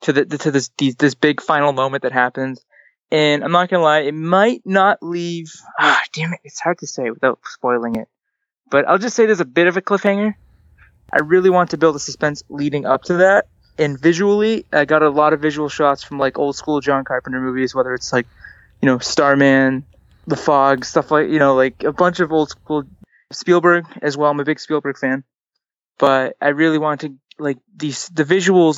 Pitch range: 130-165 Hz